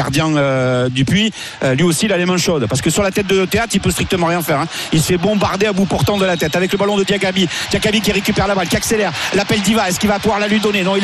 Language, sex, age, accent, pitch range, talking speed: French, male, 50-69, French, 210-250 Hz, 315 wpm